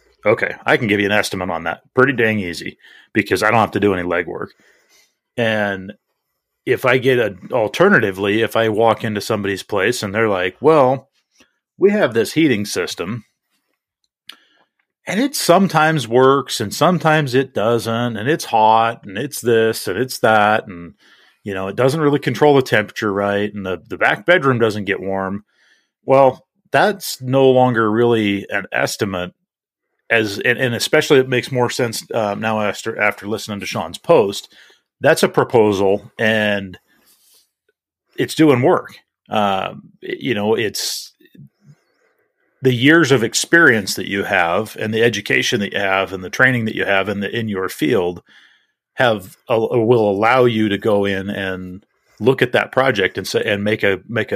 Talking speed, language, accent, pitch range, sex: 170 wpm, English, American, 100-135 Hz, male